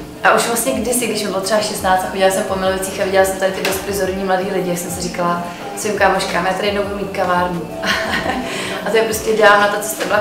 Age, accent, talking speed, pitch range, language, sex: 20-39, native, 255 wpm, 185-205 Hz, Czech, female